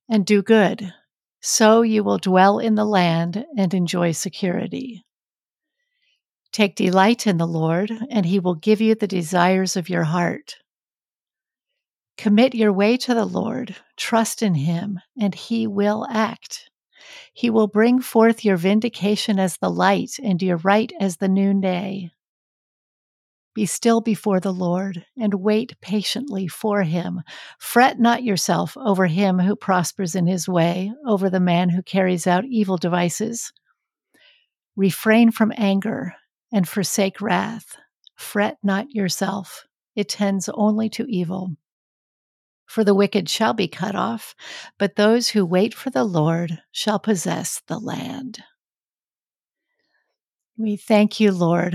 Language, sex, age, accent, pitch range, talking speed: English, female, 50-69, American, 185-225 Hz, 140 wpm